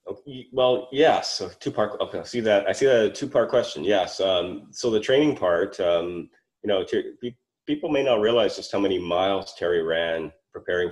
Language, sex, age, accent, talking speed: English, male, 30-49, American, 215 wpm